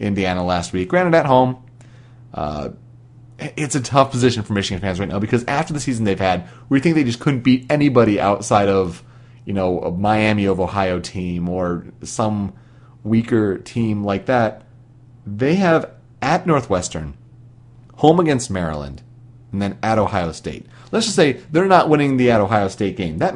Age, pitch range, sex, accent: 30-49, 105-140 Hz, male, American